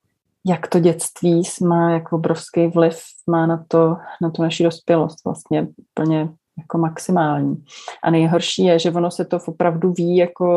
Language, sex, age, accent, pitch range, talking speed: Czech, female, 30-49, native, 155-170 Hz, 165 wpm